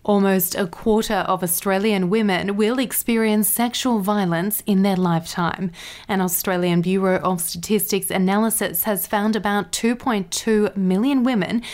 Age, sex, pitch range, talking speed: 20-39, female, 185-220 Hz, 130 wpm